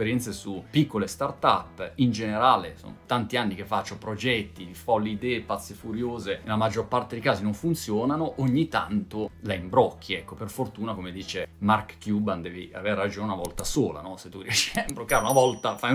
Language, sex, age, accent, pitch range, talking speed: Italian, male, 30-49, native, 100-135 Hz, 185 wpm